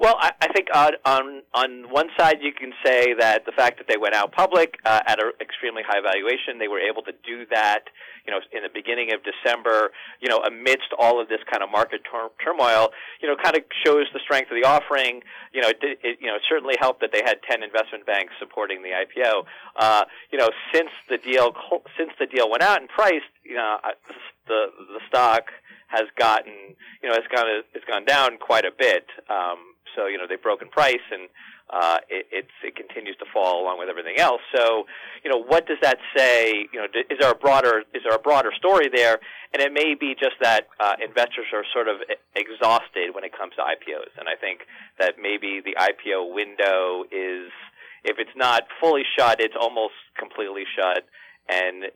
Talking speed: 215 wpm